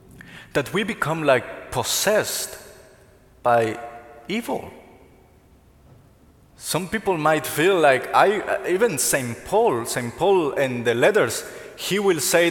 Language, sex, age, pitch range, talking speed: English, male, 30-49, 135-190 Hz, 115 wpm